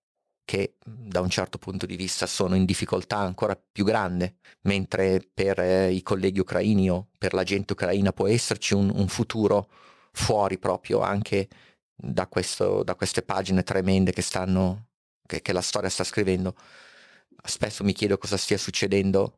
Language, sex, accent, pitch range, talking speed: Italian, male, native, 95-105 Hz, 155 wpm